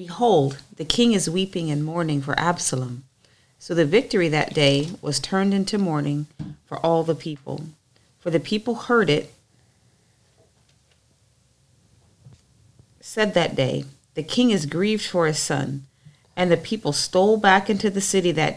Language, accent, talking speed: English, American, 150 wpm